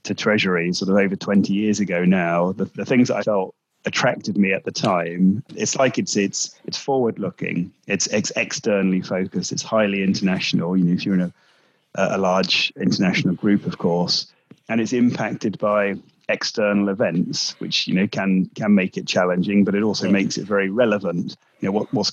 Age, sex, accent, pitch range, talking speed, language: 30-49, male, British, 95-105 Hz, 190 wpm, English